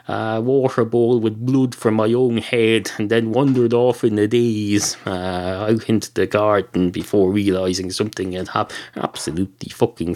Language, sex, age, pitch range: English, male, 30-49, 105-145 Hz